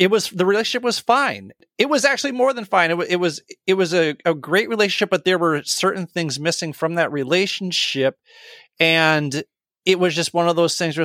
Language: English